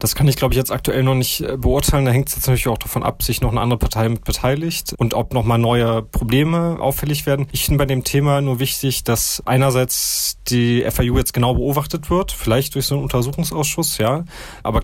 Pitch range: 115-135 Hz